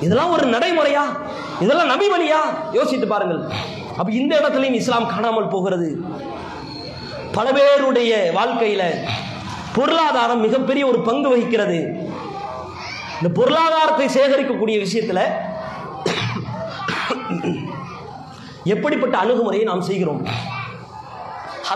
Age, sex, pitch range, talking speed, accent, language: 30-49, male, 205-280 Hz, 75 wpm, Indian, English